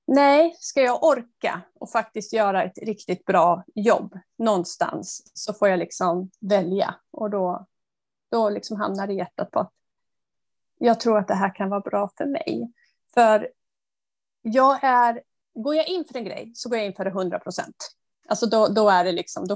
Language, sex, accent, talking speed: Swedish, female, native, 185 wpm